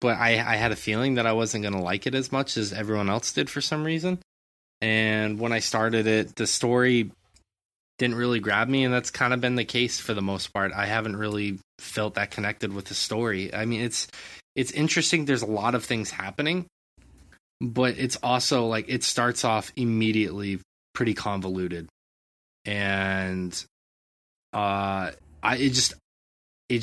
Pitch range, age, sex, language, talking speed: 95-120 Hz, 20-39, male, English, 175 wpm